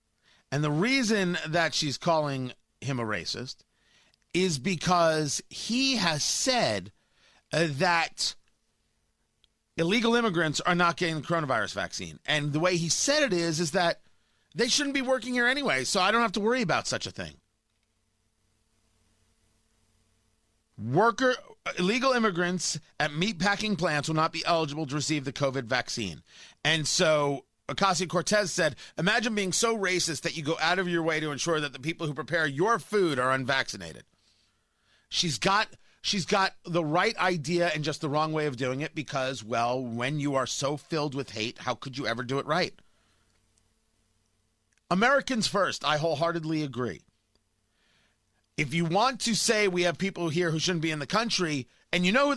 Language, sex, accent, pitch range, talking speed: English, male, American, 130-195 Hz, 165 wpm